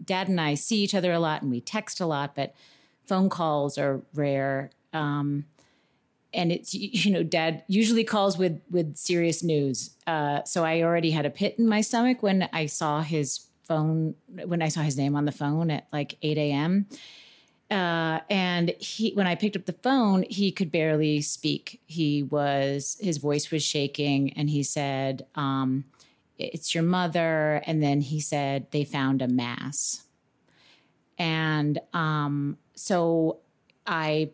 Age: 30-49